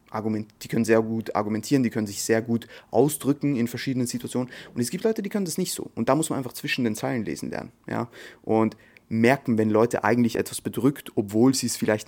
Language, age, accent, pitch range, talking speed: German, 30-49, German, 110-130 Hz, 225 wpm